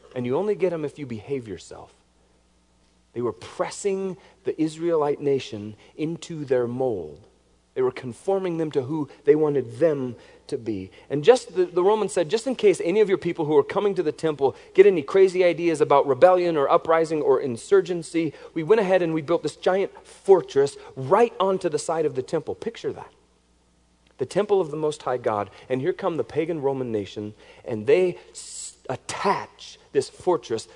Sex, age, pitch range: male, 40-59, 110-170 Hz